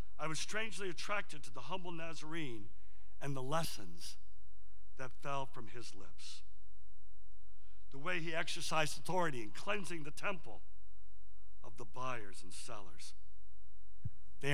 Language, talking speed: English, 130 wpm